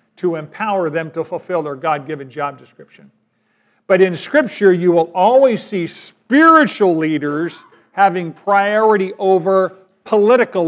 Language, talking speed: English, 125 wpm